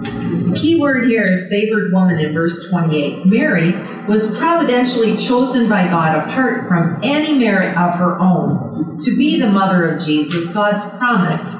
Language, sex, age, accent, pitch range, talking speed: English, female, 40-59, American, 170-230 Hz, 160 wpm